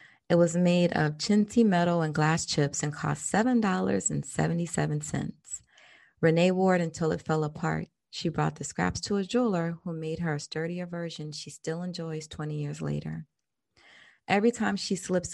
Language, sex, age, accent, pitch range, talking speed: English, female, 30-49, American, 150-185 Hz, 165 wpm